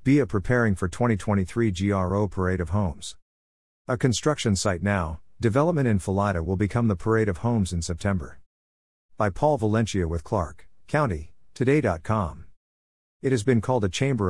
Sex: male